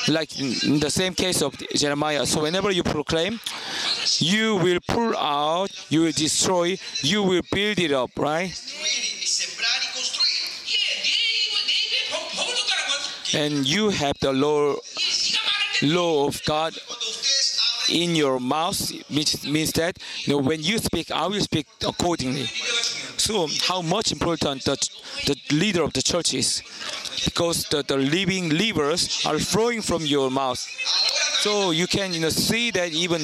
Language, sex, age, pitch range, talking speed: English, male, 40-59, 150-215 Hz, 130 wpm